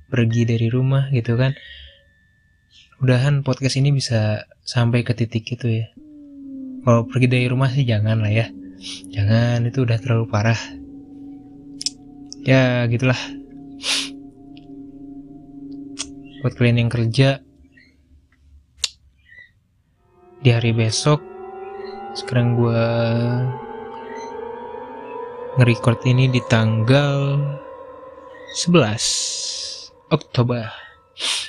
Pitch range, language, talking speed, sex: 115-140 Hz, Indonesian, 85 wpm, male